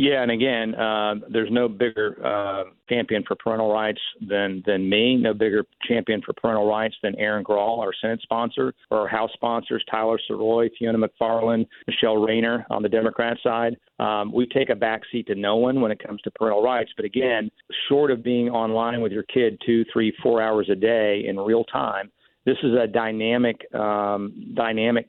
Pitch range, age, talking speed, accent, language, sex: 110-120 Hz, 50-69, 190 wpm, American, English, male